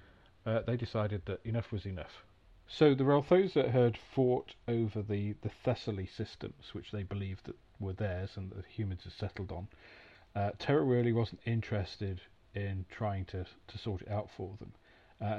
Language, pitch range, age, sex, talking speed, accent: English, 95-110 Hz, 40-59, male, 175 wpm, British